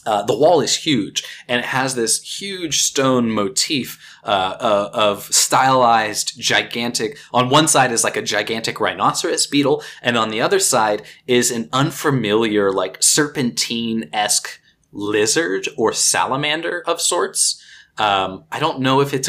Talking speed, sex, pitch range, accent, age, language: 145 wpm, male, 110-135 Hz, American, 20-39, English